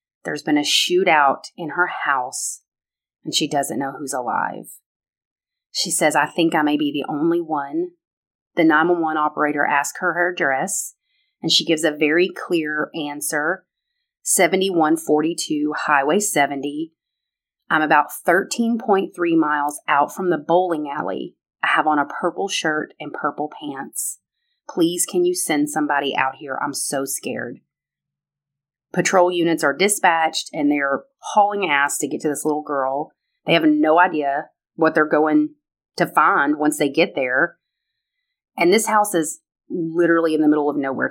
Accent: American